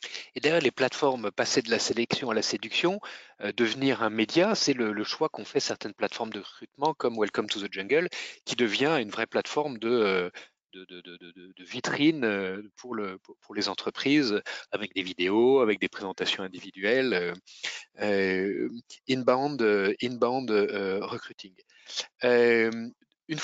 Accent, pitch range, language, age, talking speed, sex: French, 105-145 Hz, French, 30-49, 165 wpm, male